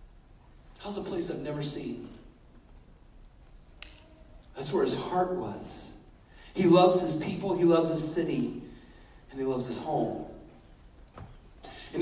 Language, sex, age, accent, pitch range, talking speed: English, male, 40-59, American, 165-215 Hz, 120 wpm